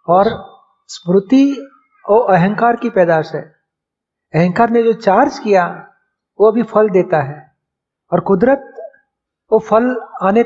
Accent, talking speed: native, 125 wpm